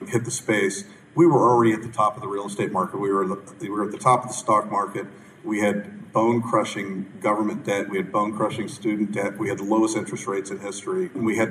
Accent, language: American, English